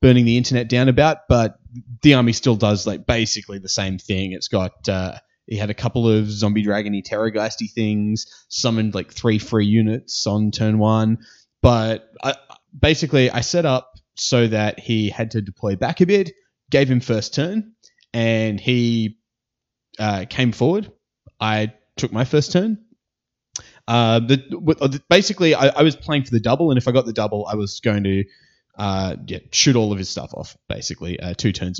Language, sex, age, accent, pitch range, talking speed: English, male, 20-39, Australian, 105-130 Hz, 185 wpm